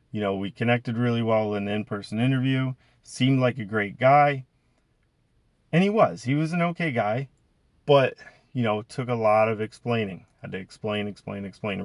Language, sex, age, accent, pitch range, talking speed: English, male, 30-49, American, 105-135 Hz, 185 wpm